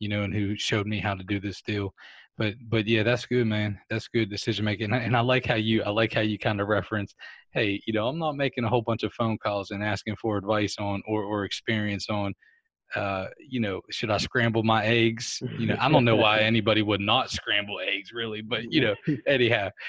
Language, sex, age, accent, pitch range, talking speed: English, male, 20-39, American, 105-120 Hz, 235 wpm